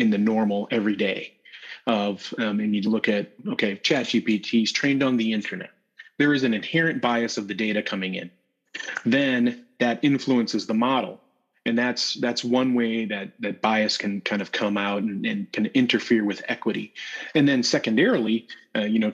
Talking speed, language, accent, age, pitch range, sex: 180 wpm, English, American, 30-49, 105-135 Hz, male